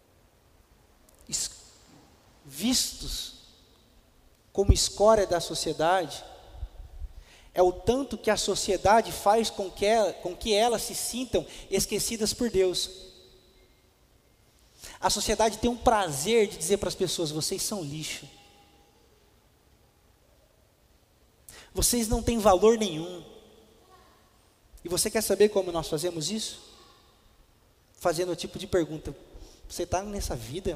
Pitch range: 155-230 Hz